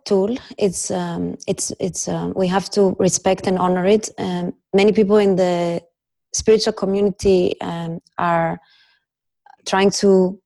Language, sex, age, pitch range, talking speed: English, female, 30-49, 180-225 Hz, 140 wpm